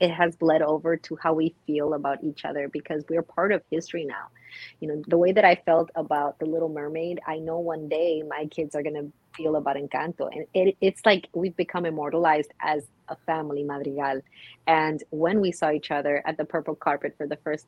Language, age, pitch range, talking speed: English, 30-49, 150-175 Hz, 215 wpm